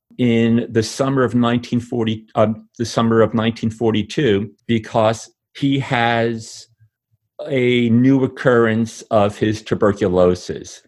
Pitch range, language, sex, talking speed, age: 100-115 Hz, English, male, 105 wpm, 40-59